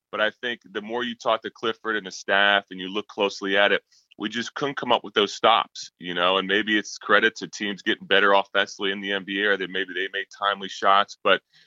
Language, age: English, 30-49